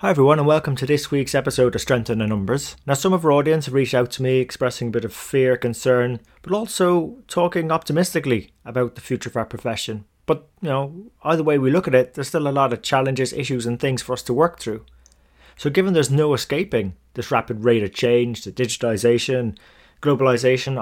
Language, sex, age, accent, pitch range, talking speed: English, male, 20-39, British, 115-145 Hz, 215 wpm